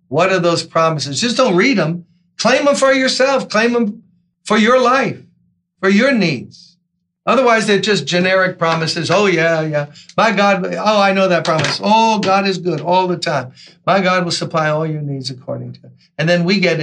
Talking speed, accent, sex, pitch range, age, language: 195 wpm, American, male, 160-195 Hz, 60-79, English